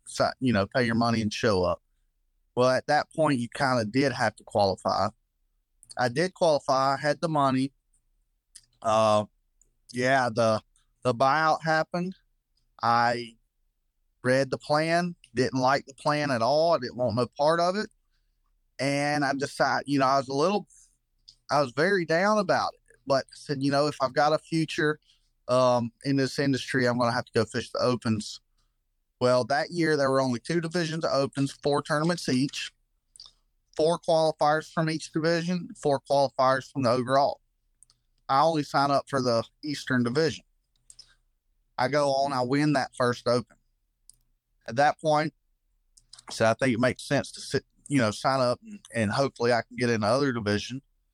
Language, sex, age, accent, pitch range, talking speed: English, male, 30-49, American, 120-150 Hz, 170 wpm